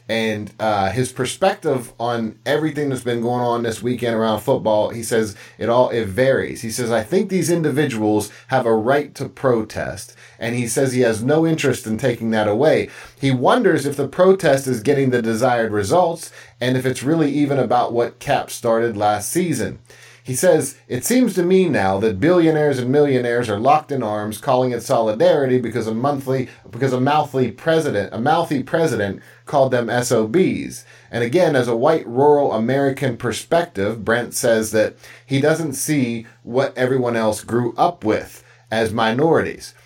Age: 30-49